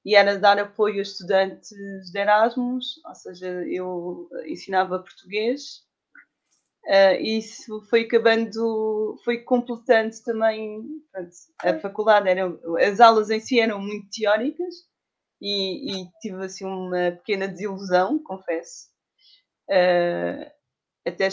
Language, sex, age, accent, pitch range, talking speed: Portuguese, female, 20-39, Brazilian, 200-260 Hz, 120 wpm